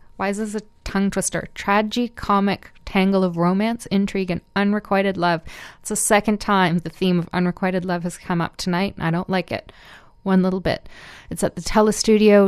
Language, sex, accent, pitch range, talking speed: English, female, American, 185-210 Hz, 185 wpm